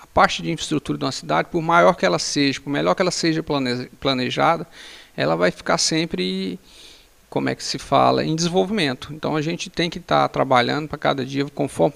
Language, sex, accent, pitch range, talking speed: Portuguese, male, Brazilian, 125-150 Hz, 195 wpm